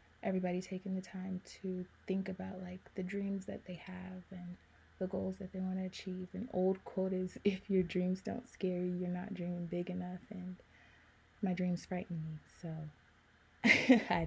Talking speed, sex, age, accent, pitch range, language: 180 wpm, female, 20-39, American, 180-210 Hz, English